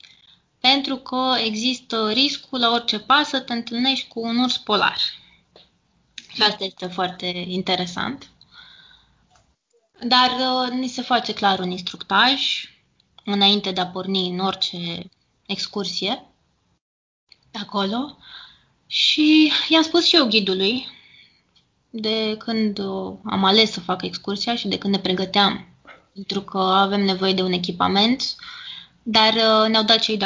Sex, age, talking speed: female, 20-39, 135 wpm